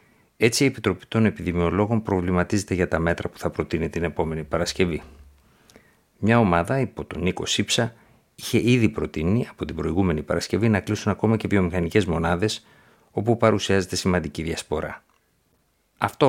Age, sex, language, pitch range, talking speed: 50-69, male, Greek, 85-110 Hz, 145 wpm